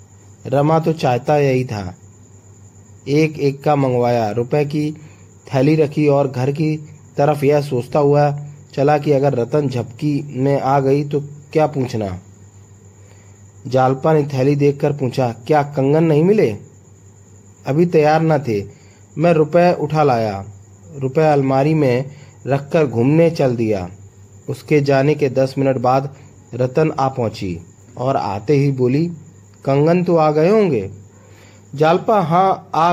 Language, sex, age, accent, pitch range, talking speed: Hindi, male, 30-49, native, 105-150 Hz, 140 wpm